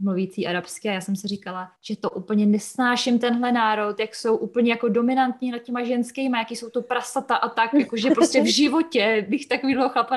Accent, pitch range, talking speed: native, 195-240 Hz, 205 wpm